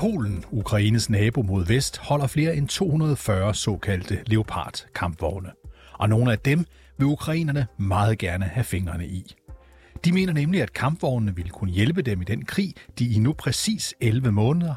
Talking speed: 165 wpm